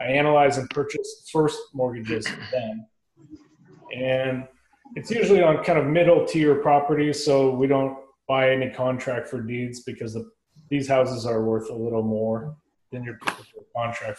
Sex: male